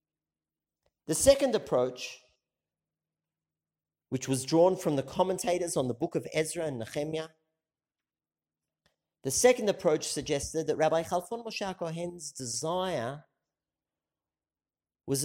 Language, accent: English, Australian